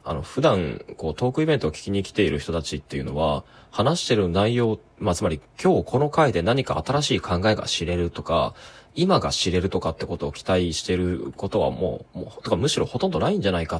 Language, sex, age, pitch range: Japanese, male, 20-39, 85-120 Hz